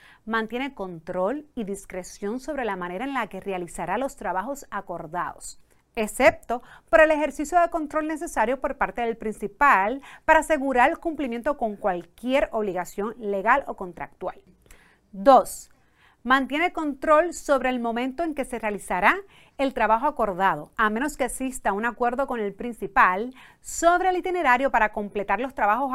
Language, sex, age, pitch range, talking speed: Spanish, female, 40-59, 210-285 Hz, 150 wpm